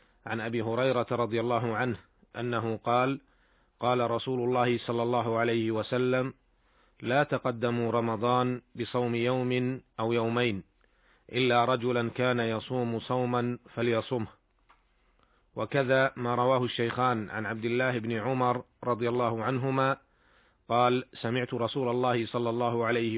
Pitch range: 115-130 Hz